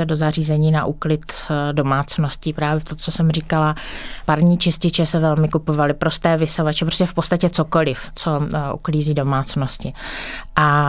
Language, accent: Czech, native